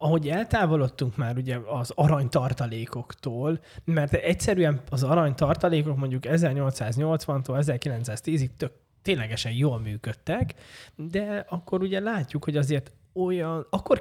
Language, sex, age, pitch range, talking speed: Hungarian, male, 20-39, 125-160 Hz, 105 wpm